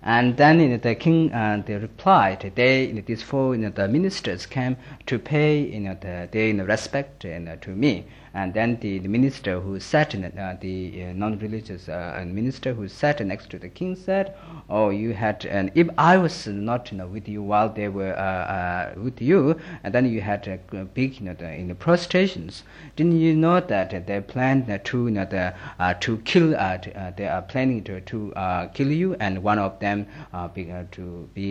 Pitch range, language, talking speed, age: 95-125 Hz, Italian, 240 wpm, 50-69